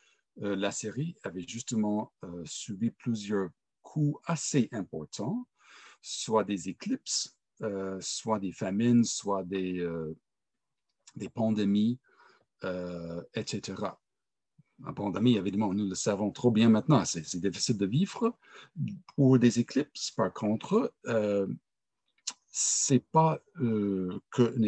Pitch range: 100-130 Hz